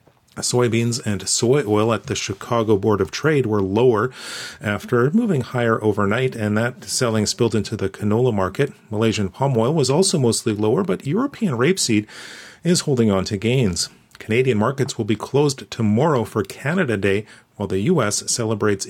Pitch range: 105-130 Hz